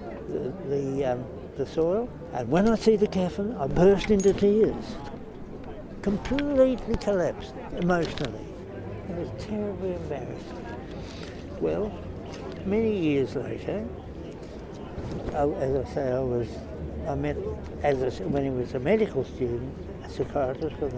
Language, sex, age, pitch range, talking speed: English, male, 60-79, 105-170 Hz, 130 wpm